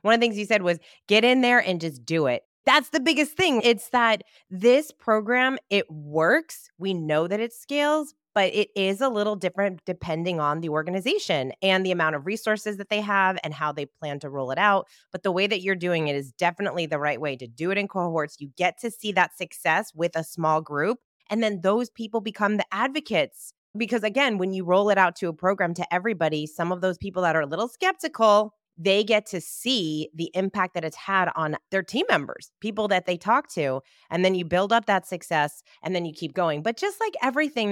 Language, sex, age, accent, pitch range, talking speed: English, female, 20-39, American, 170-225 Hz, 230 wpm